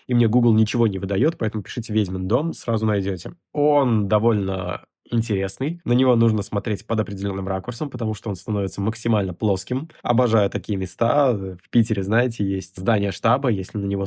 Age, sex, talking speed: 20-39, male, 170 wpm